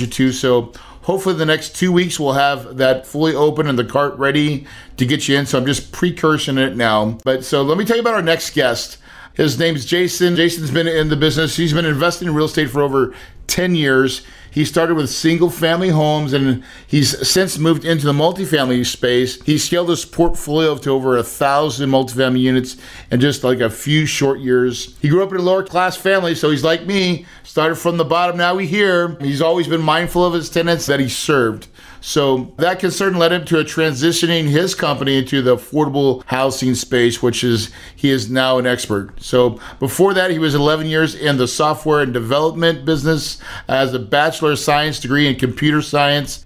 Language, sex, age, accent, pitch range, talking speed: English, male, 40-59, American, 130-165 Hz, 205 wpm